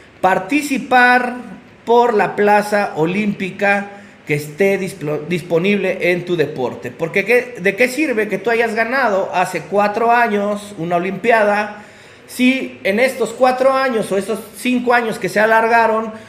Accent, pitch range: Mexican, 190-230 Hz